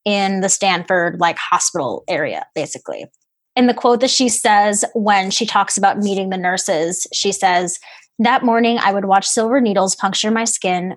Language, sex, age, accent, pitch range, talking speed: English, female, 20-39, American, 195-235 Hz, 175 wpm